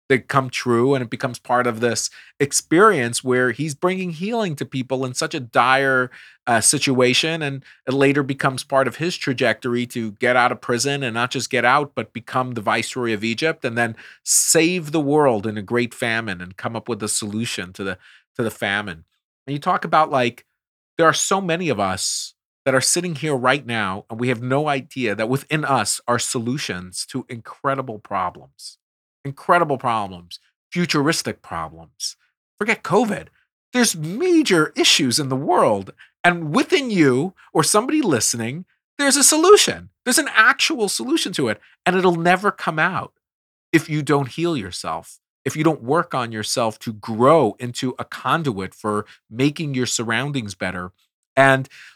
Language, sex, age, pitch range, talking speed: English, male, 40-59, 120-160 Hz, 170 wpm